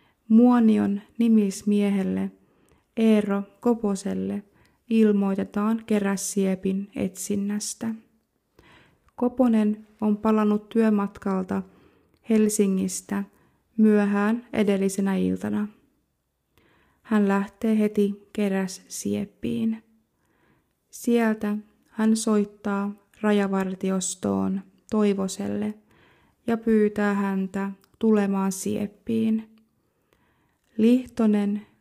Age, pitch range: 20-39, 195-215 Hz